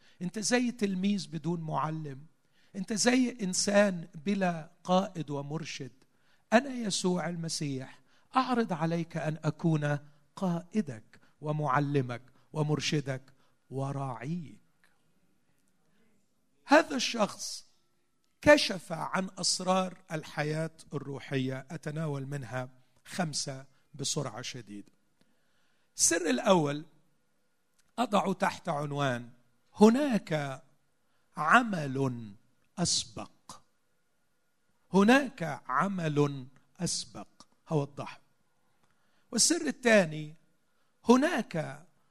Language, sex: Arabic, male